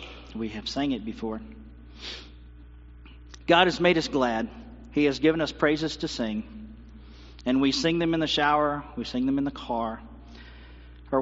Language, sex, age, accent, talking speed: English, male, 50-69, American, 165 wpm